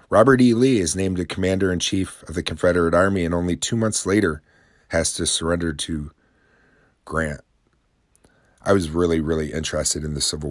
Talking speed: 165 wpm